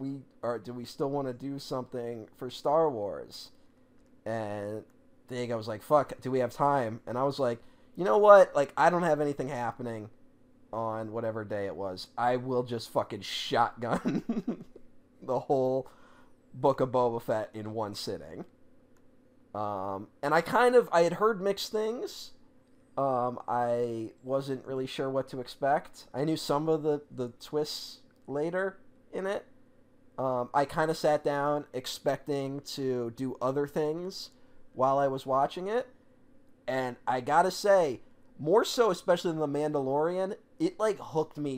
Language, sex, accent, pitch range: English, male, American, 125-160 Hz